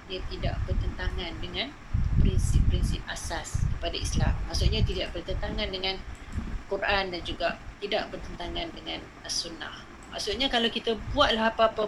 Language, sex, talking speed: Malay, female, 120 wpm